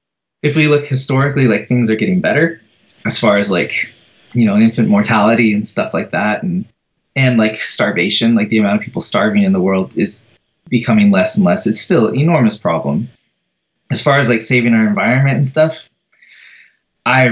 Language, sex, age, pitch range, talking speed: English, male, 20-39, 110-150 Hz, 185 wpm